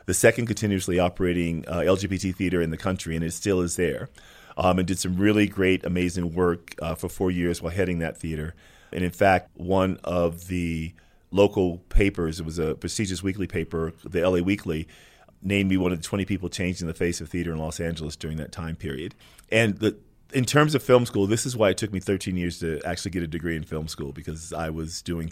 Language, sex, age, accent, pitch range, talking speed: English, male, 40-59, American, 85-100 Hz, 220 wpm